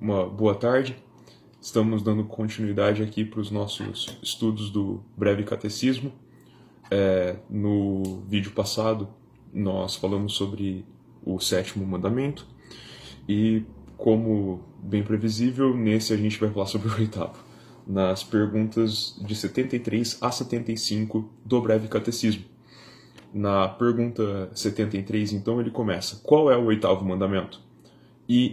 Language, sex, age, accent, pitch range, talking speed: Portuguese, male, 20-39, Brazilian, 105-120 Hz, 120 wpm